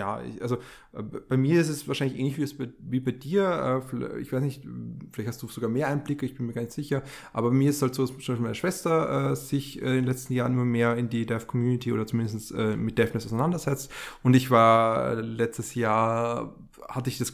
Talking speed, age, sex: 215 wpm, 20-39, male